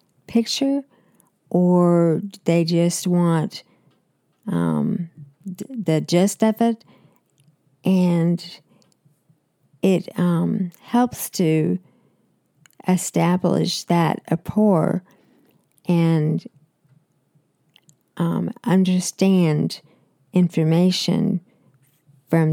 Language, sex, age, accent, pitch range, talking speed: English, female, 50-69, American, 160-200 Hz, 60 wpm